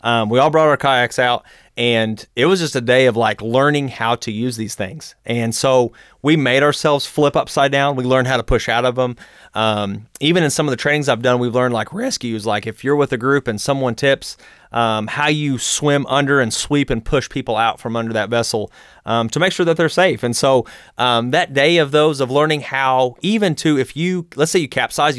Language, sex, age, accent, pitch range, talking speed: English, male, 30-49, American, 115-145 Hz, 235 wpm